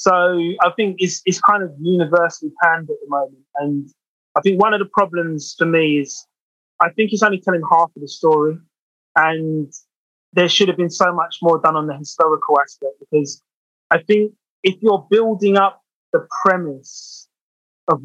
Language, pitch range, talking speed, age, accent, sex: English, 150-185 Hz, 180 wpm, 20-39, British, male